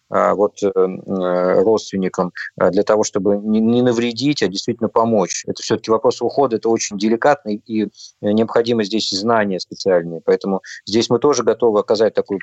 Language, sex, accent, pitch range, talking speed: Russian, male, native, 100-125 Hz, 140 wpm